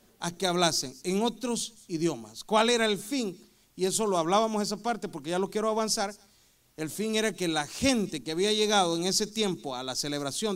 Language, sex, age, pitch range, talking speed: Spanish, male, 40-59, 175-235 Hz, 205 wpm